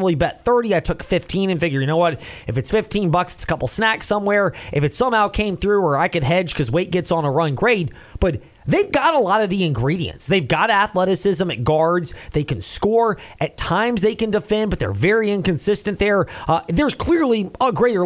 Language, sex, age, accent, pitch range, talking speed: English, male, 30-49, American, 160-210 Hz, 220 wpm